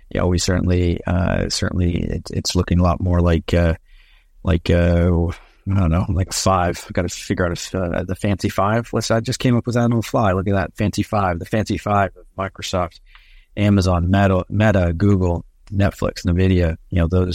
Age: 30-49